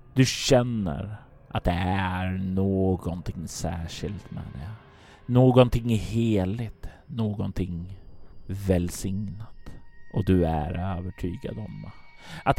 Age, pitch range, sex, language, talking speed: 30-49, 80-100 Hz, male, Swedish, 90 wpm